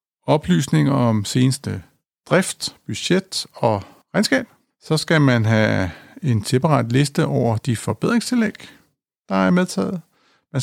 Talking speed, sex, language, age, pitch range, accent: 120 wpm, male, Danish, 50-69, 115-165 Hz, native